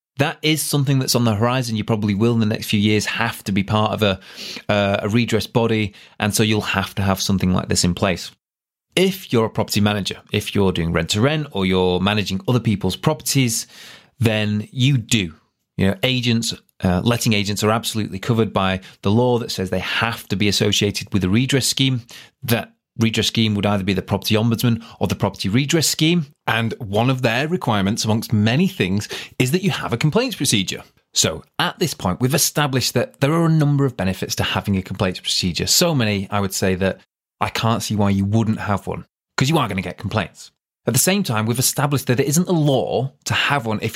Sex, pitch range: male, 100-130 Hz